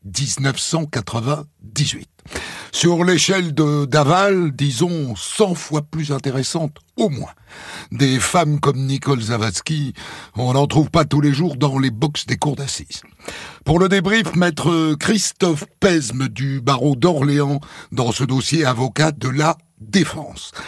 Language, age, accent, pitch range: French, 60-79, French, 110-155 Hz